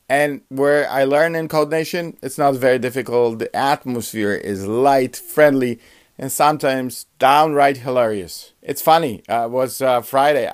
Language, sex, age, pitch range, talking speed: English, male, 50-69, 120-155 Hz, 150 wpm